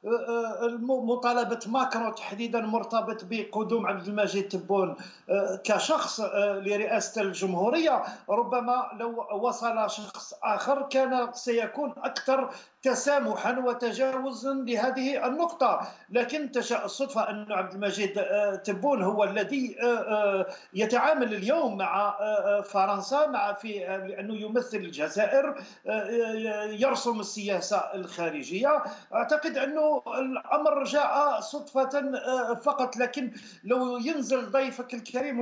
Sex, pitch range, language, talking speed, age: male, 215-265 Hz, Arabic, 95 wpm, 50-69